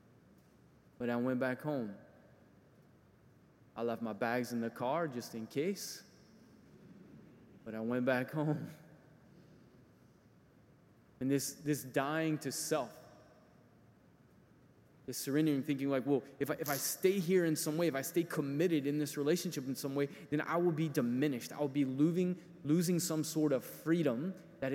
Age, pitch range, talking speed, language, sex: 20-39, 125-155 Hz, 155 wpm, English, male